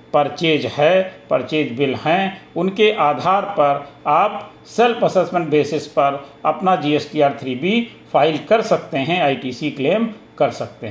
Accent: native